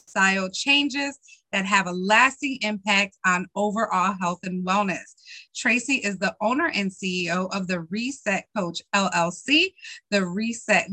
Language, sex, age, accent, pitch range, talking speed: English, female, 30-49, American, 190-245 Hz, 135 wpm